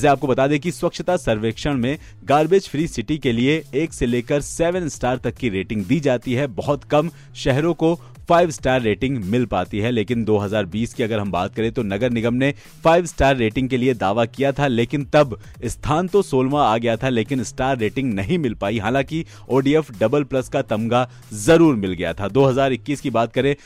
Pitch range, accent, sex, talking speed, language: 110-150 Hz, native, male, 180 wpm, Hindi